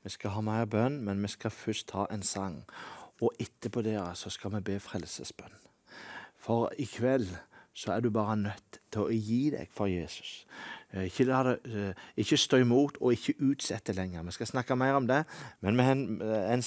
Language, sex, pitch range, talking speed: English, male, 105-140 Hz, 185 wpm